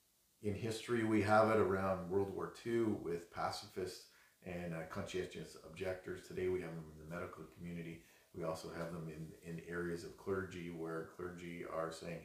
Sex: male